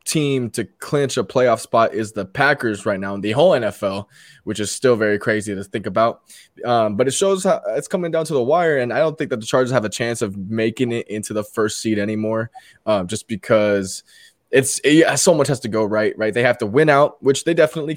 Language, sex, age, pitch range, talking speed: English, male, 20-39, 105-135 Hz, 245 wpm